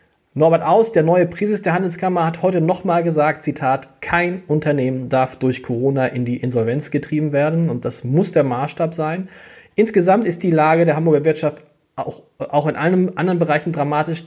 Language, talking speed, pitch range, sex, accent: German, 175 wpm, 135-170 Hz, male, German